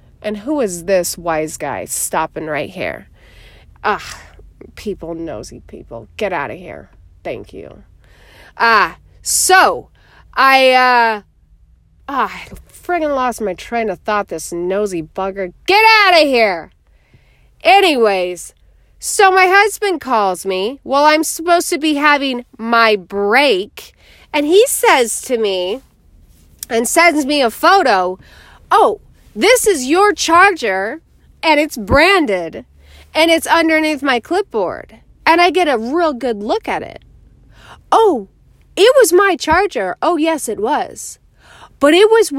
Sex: female